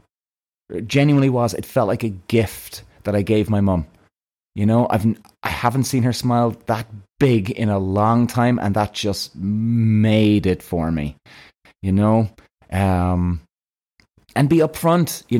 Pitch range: 100-125 Hz